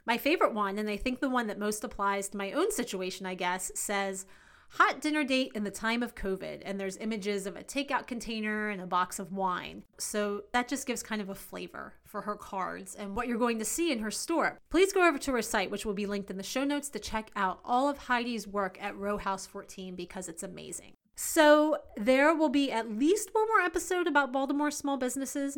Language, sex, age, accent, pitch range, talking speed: English, female, 30-49, American, 200-270 Hz, 230 wpm